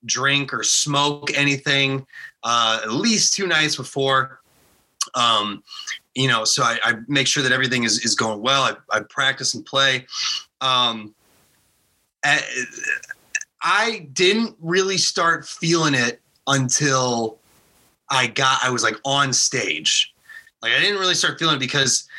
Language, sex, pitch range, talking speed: English, male, 130-165 Hz, 145 wpm